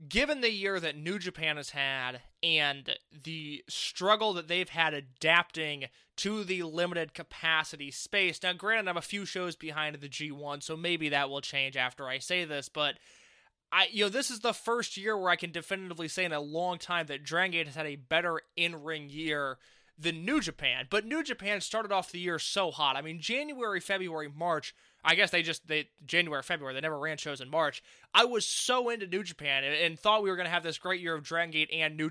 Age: 20-39